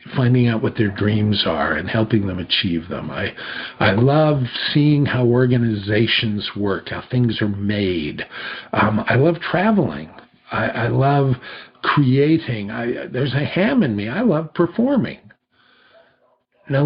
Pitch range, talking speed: 110-145 Hz, 140 wpm